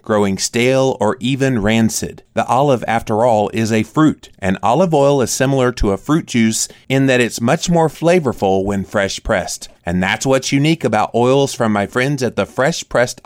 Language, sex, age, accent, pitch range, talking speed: English, male, 30-49, American, 110-135 Hz, 190 wpm